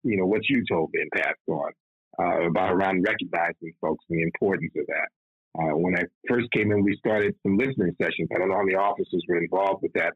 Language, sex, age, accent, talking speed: English, male, 50-69, American, 235 wpm